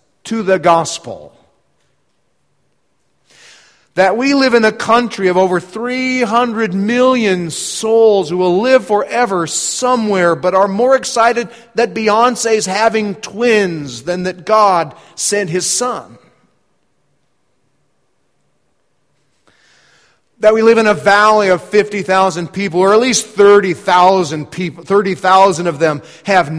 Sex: male